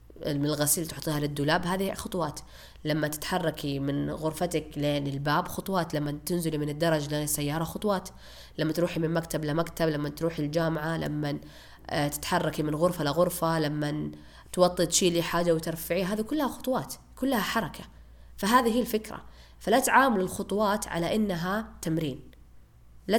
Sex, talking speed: female, 135 wpm